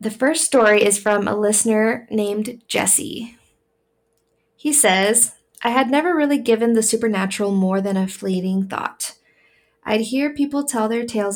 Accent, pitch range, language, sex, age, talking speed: American, 195-230 Hz, English, female, 20-39, 155 wpm